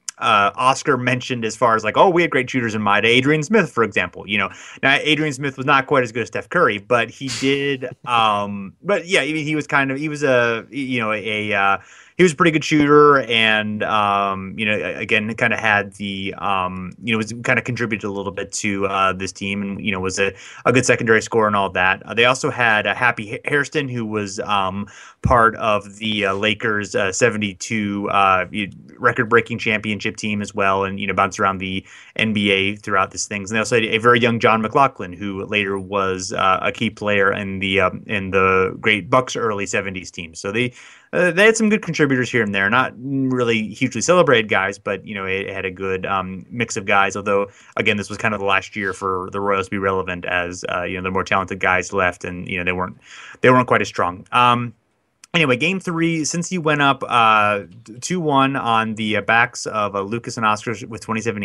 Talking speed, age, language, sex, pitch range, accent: 225 wpm, 30-49, English, male, 100-125 Hz, American